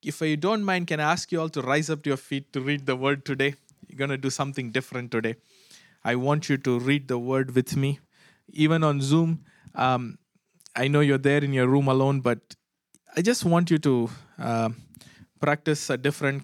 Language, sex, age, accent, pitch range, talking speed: English, male, 20-39, Indian, 130-160 Hz, 210 wpm